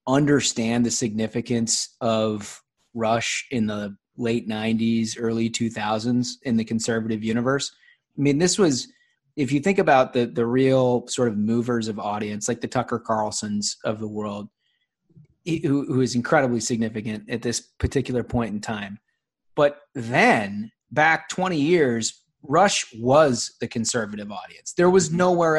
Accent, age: American, 30-49